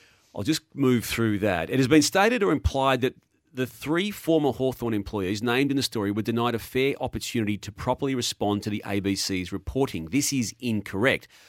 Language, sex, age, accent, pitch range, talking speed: English, male, 40-59, Australian, 105-135 Hz, 190 wpm